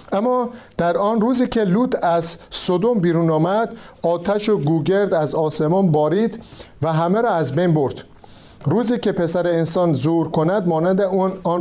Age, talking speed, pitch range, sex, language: 50-69, 155 wpm, 160-205 Hz, male, Persian